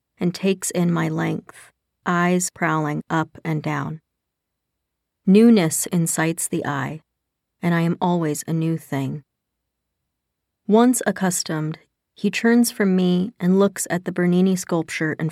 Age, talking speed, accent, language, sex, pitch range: 40-59, 135 wpm, American, English, female, 150-185 Hz